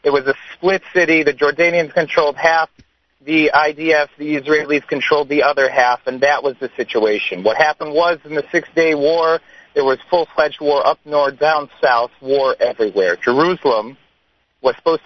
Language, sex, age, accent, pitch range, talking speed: English, male, 40-59, American, 145-185 Hz, 165 wpm